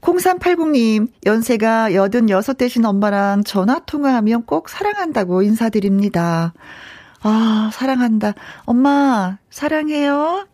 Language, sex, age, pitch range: Korean, female, 40-59, 190-255 Hz